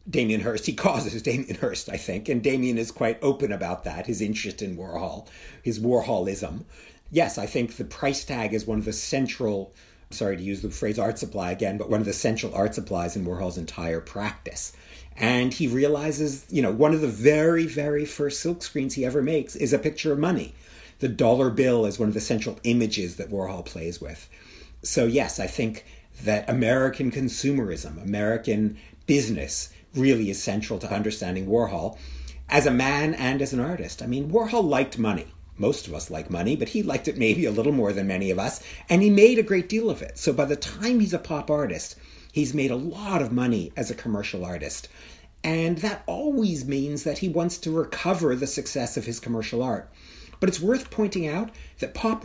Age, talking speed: 50-69, 205 wpm